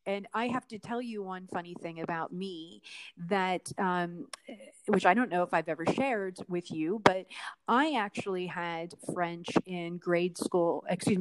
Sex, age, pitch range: female, 30-49, 175-215 Hz